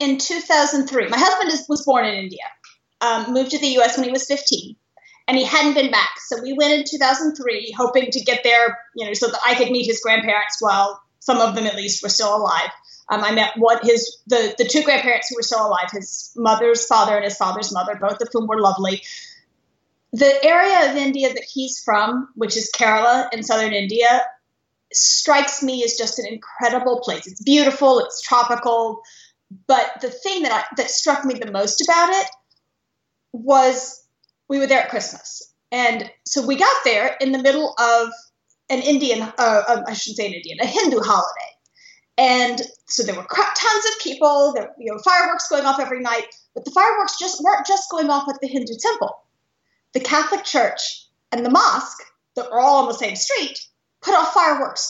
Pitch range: 230-305 Hz